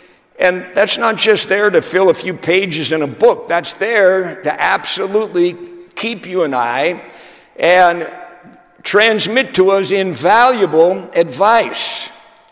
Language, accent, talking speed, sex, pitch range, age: English, American, 130 wpm, male, 160-230 Hz, 60-79